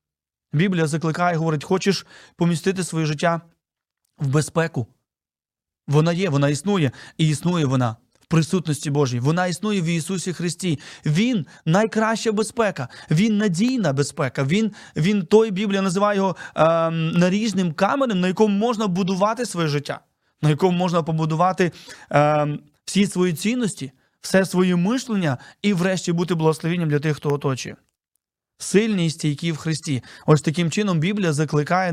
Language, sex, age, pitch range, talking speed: Ukrainian, male, 30-49, 155-195 Hz, 135 wpm